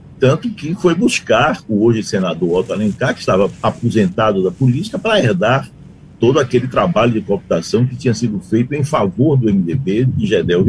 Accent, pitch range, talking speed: Brazilian, 115-165 Hz, 175 wpm